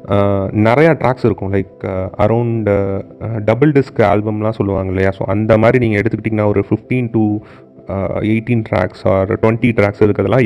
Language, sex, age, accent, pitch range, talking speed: Tamil, male, 30-49, native, 100-130 Hz, 140 wpm